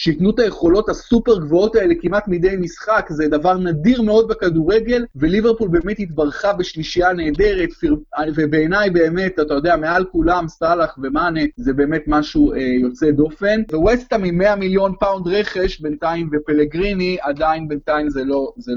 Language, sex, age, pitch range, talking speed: Hebrew, male, 30-49, 160-210 Hz, 145 wpm